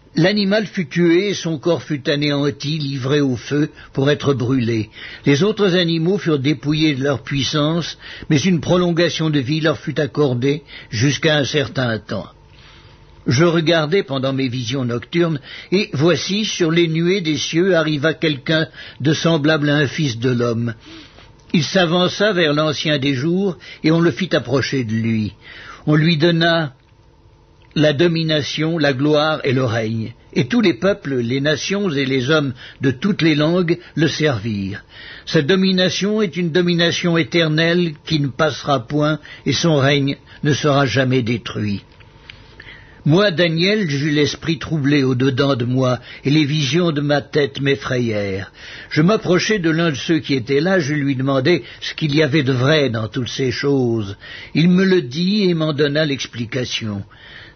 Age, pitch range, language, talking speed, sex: 60-79, 135-170 Hz, French, 165 wpm, male